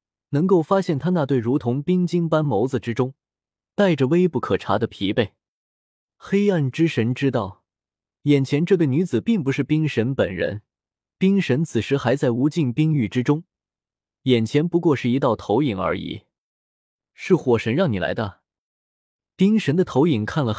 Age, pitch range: 20-39, 110-170 Hz